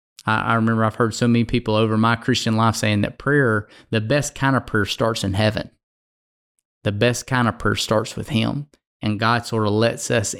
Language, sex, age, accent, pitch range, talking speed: English, male, 20-39, American, 110-120 Hz, 210 wpm